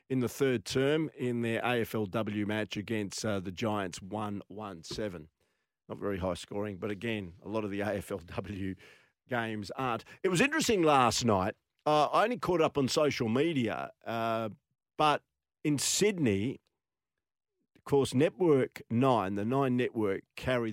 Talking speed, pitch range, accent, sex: 150 wpm, 105-130 Hz, Australian, male